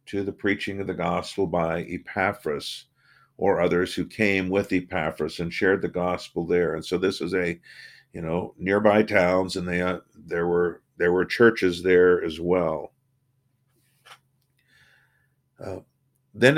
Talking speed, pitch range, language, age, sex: 150 wpm, 95-125 Hz, English, 50-69, male